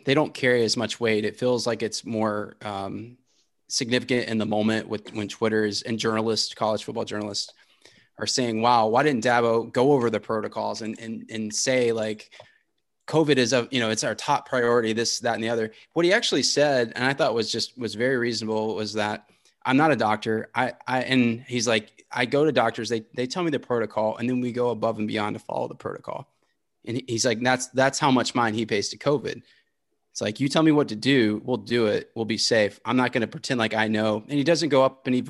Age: 20-39